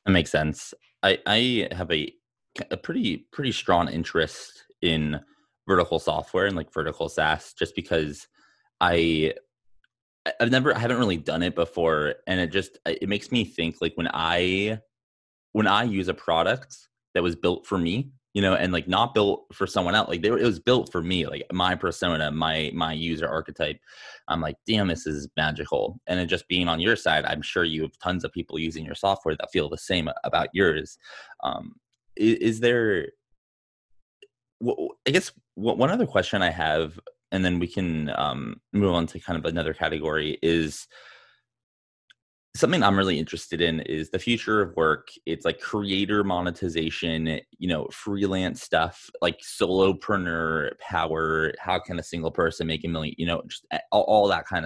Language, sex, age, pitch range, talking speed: English, male, 20-39, 80-100 Hz, 180 wpm